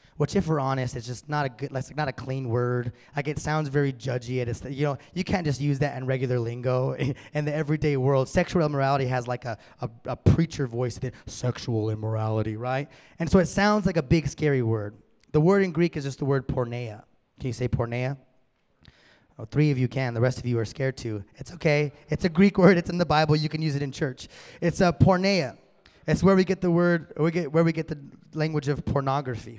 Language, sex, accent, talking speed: English, male, American, 230 wpm